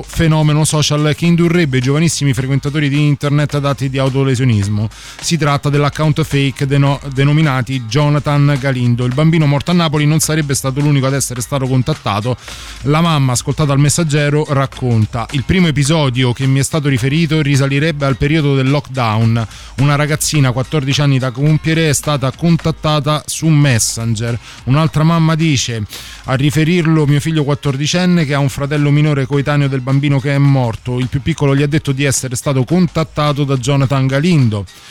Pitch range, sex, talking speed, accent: 130-155 Hz, male, 165 wpm, native